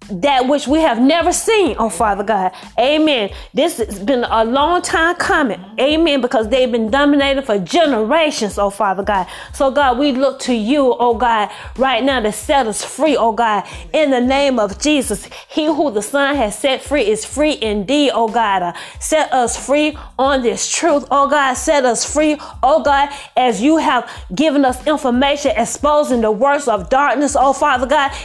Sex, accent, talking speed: female, American, 185 wpm